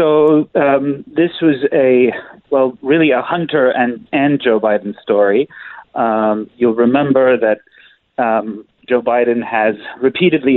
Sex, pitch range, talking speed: male, 110-130 Hz, 130 wpm